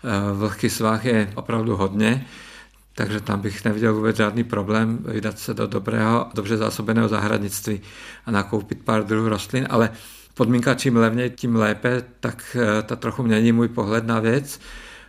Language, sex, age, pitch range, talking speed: Czech, male, 50-69, 110-120 Hz, 150 wpm